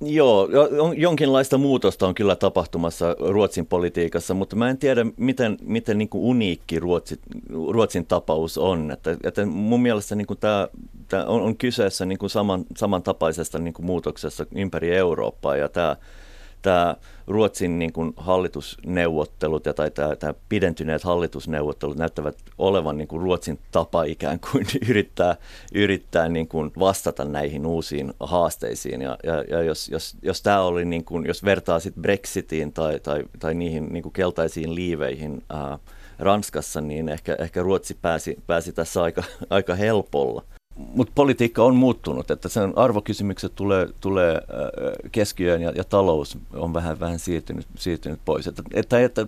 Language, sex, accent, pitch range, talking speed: Finnish, male, native, 80-100 Hz, 145 wpm